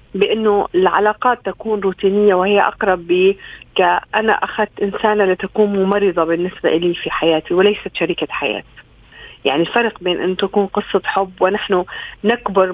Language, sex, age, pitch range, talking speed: Arabic, female, 40-59, 190-225 Hz, 130 wpm